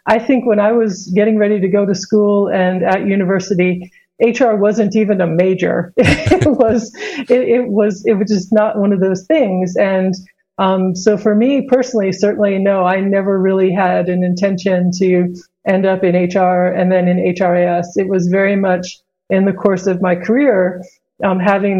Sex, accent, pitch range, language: female, American, 185-210 Hz, English